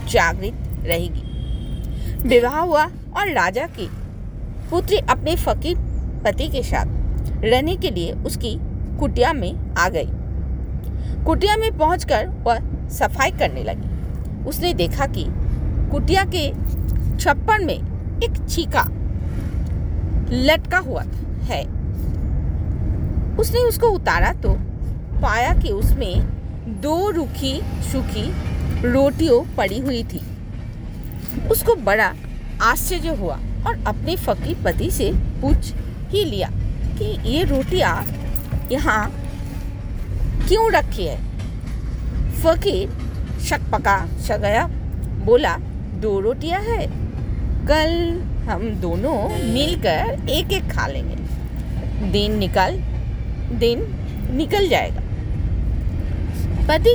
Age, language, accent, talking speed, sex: 50-69, Hindi, native, 85 wpm, female